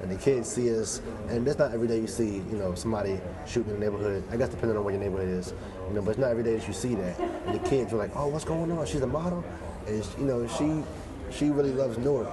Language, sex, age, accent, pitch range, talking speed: English, male, 20-39, American, 105-125 Hz, 285 wpm